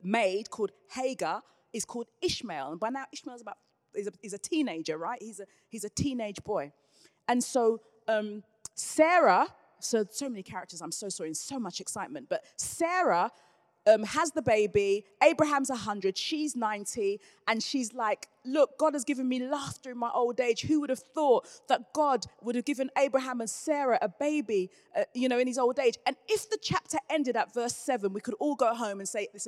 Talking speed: 200 wpm